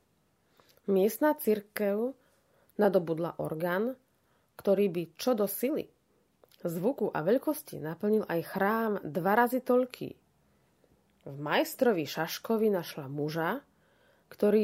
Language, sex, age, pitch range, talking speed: Slovak, female, 30-49, 170-220 Hz, 100 wpm